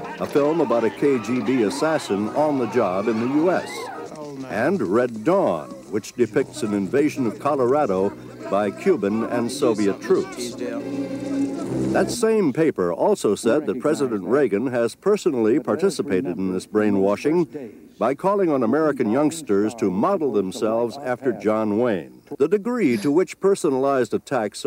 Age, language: 60-79, English